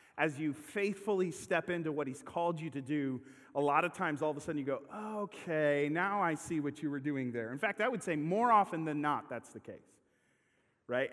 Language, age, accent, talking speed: English, 30-49, American, 230 wpm